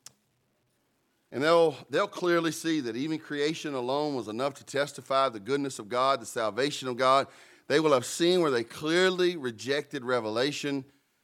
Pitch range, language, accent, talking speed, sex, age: 115-150 Hz, English, American, 160 wpm, male, 40-59